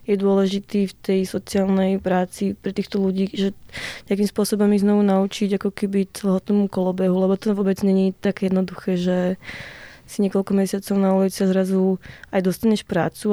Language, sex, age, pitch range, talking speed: Slovak, female, 20-39, 190-205 Hz, 160 wpm